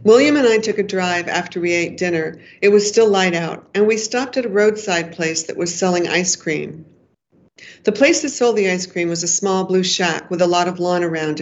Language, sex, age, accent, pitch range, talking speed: English, female, 50-69, American, 170-200 Hz, 235 wpm